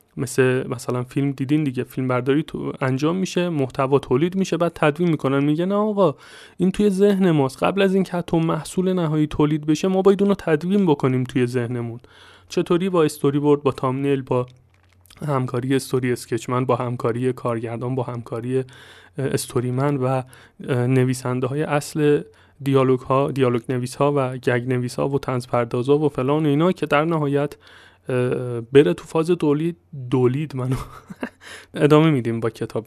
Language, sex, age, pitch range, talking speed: Persian, male, 30-49, 130-155 Hz, 155 wpm